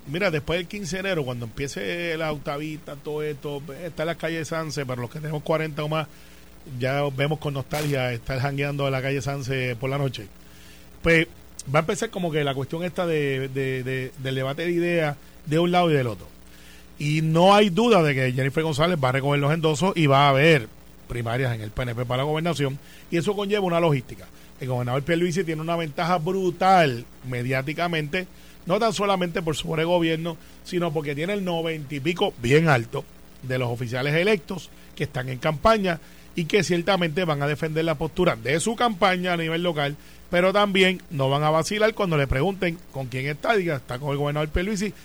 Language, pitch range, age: Spanish, 135-175 Hz, 30-49